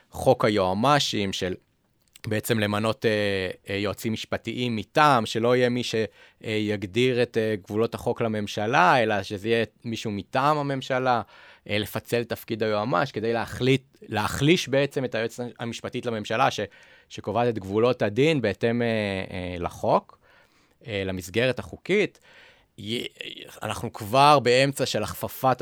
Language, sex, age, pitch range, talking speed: Hebrew, male, 30-49, 105-125 Hz, 130 wpm